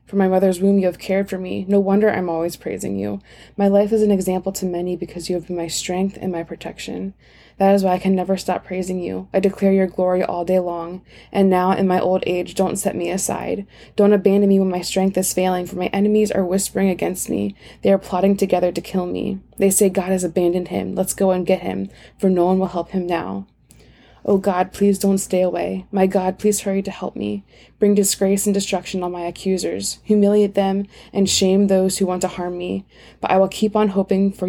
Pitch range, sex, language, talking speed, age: 180-195 Hz, female, English, 235 wpm, 20-39